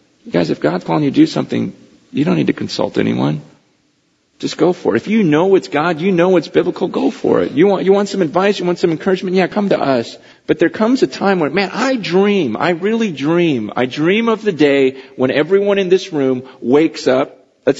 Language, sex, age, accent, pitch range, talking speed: English, male, 40-59, American, 165-200 Hz, 235 wpm